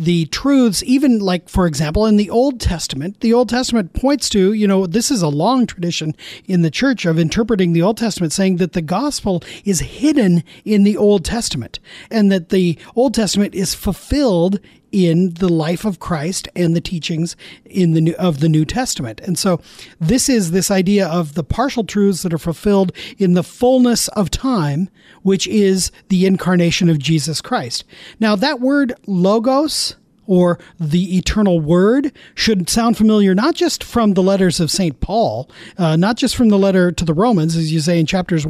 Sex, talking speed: male, 185 wpm